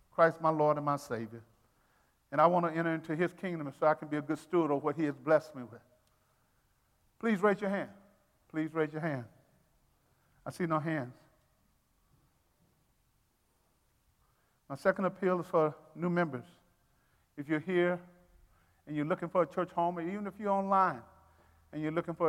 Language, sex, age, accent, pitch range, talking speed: English, male, 50-69, American, 130-165 Hz, 180 wpm